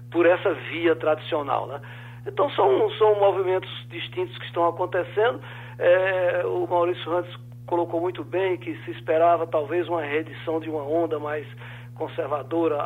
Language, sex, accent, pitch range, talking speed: Portuguese, male, Brazilian, 125-170 Hz, 145 wpm